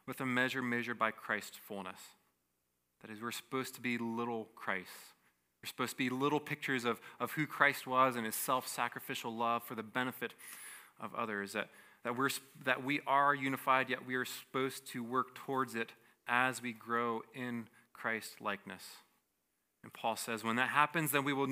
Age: 20-39